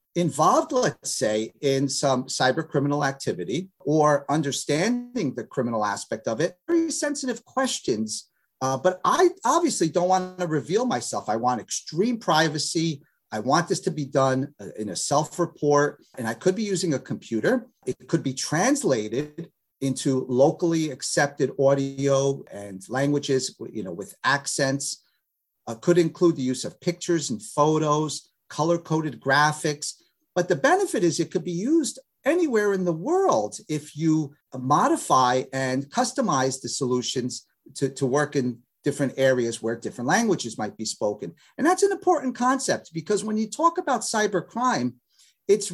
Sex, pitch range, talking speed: male, 135-210 Hz, 150 wpm